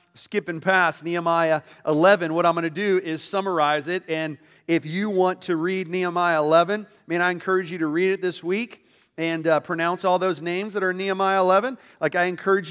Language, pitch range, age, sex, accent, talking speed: English, 170-210 Hz, 40-59, male, American, 205 wpm